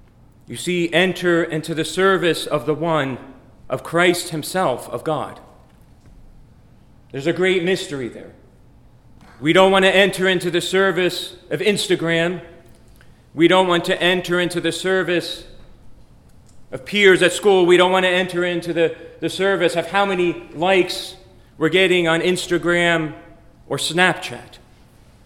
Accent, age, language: American, 40-59, English